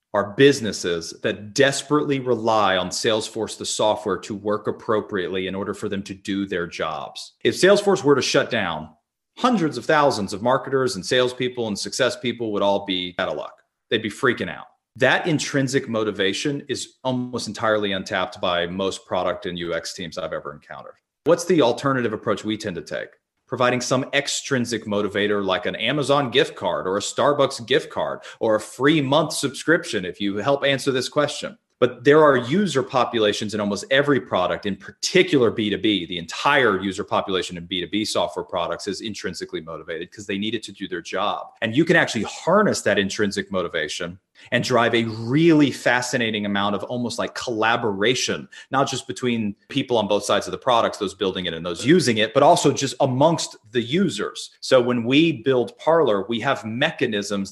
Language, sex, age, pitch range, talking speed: English, male, 40-59, 100-135 Hz, 185 wpm